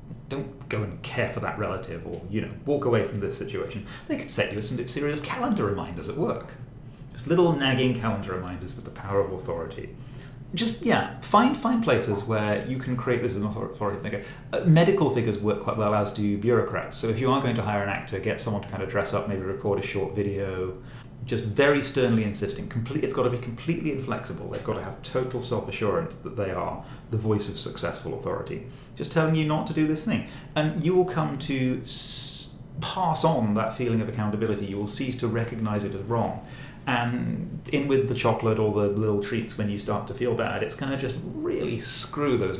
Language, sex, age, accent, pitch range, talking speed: English, male, 30-49, British, 105-135 Hz, 215 wpm